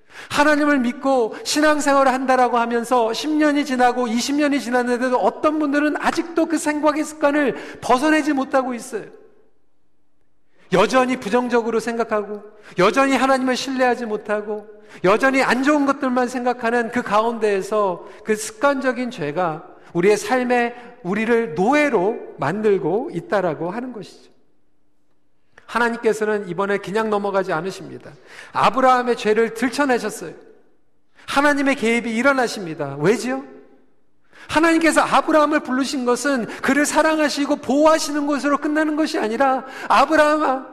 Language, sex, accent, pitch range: Korean, male, native, 220-290 Hz